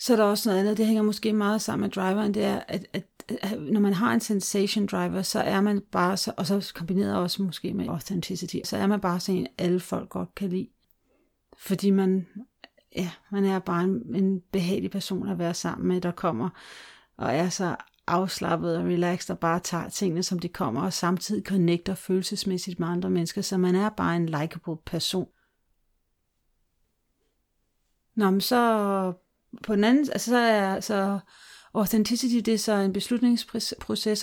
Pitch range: 185-215 Hz